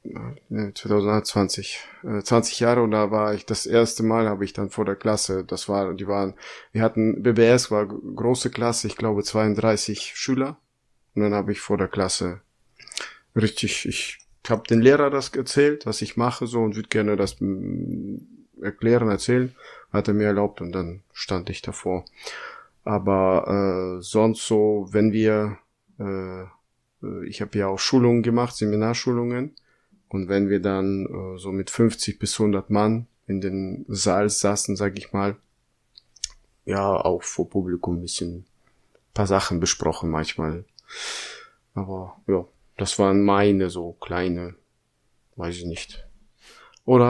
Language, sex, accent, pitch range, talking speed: German, male, German, 95-115 Hz, 150 wpm